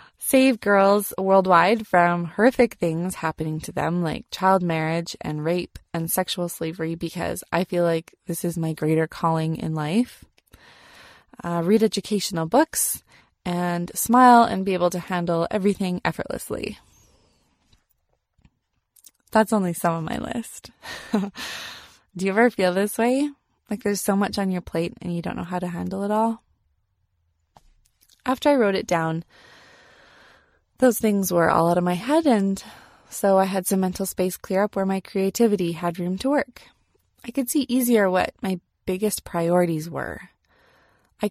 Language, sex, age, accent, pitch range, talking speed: English, female, 20-39, American, 170-215 Hz, 155 wpm